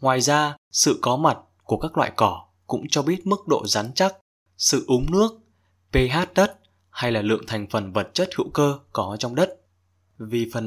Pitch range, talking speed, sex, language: 105-145 Hz, 195 wpm, male, Vietnamese